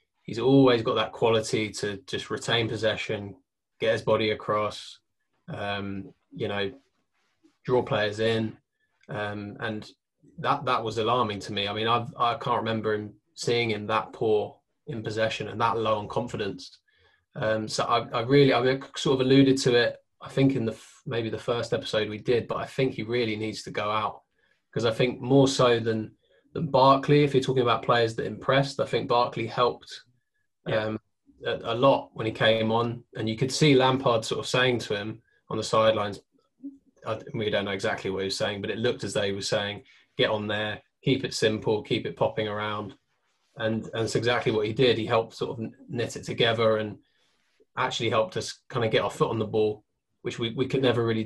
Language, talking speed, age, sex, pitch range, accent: English, 200 wpm, 20-39, male, 110-130 Hz, British